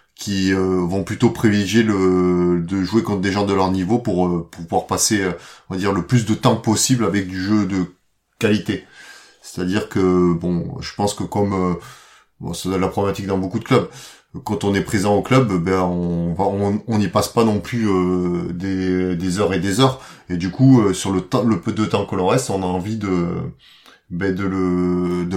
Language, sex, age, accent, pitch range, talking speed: French, male, 30-49, French, 90-105 Hz, 205 wpm